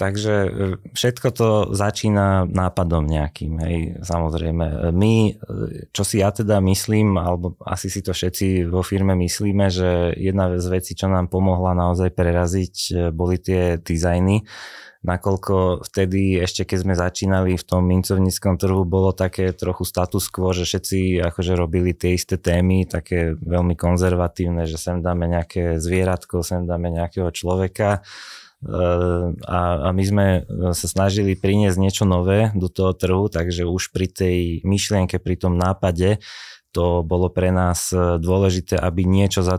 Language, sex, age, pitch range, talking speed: Slovak, male, 20-39, 90-95 Hz, 145 wpm